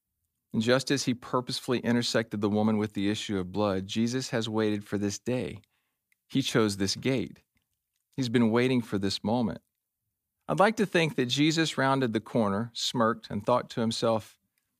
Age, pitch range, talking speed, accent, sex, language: 40-59, 110-145 Hz, 175 wpm, American, male, English